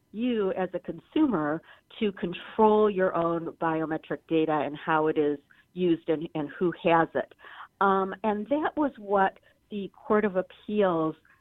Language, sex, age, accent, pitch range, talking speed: English, female, 40-59, American, 150-185 Hz, 155 wpm